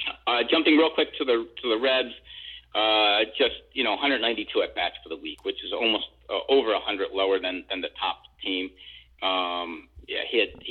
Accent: American